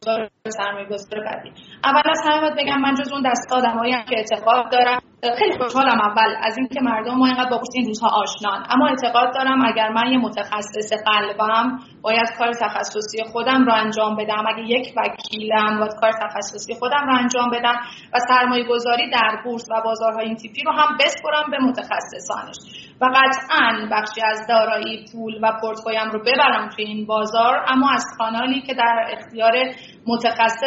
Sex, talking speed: female, 160 wpm